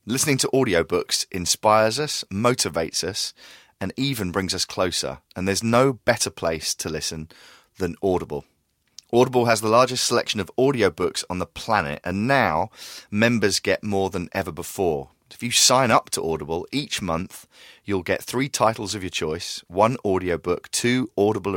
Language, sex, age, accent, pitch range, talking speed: English, male, 30-49, British, 85-110 Hz, 160 wpm